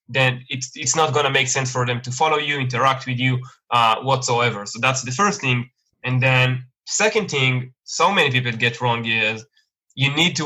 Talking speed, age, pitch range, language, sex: 200 wpm, 20-39, 125-150 Hz, English, male